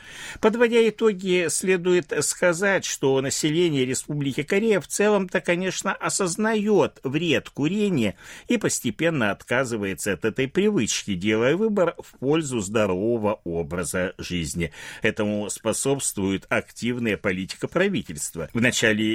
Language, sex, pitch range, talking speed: Russian, male, 110-180 Hz, 105 wpm